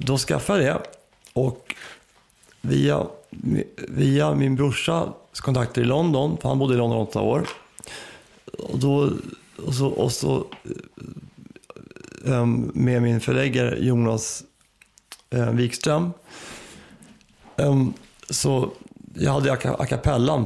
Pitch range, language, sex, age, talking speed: 110-135 Hz, English, male, 30-49, 105 wpm